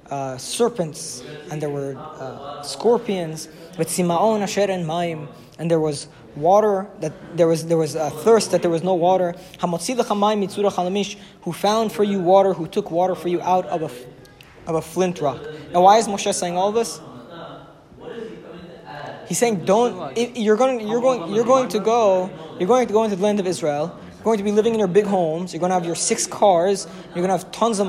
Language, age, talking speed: English, 20-39, 205 wpm